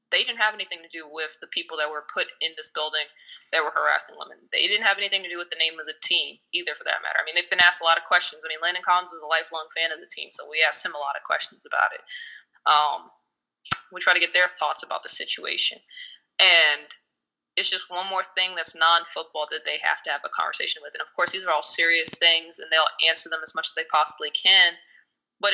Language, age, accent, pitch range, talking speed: English, 20-39, American, 165-200 Hz, 260 wpm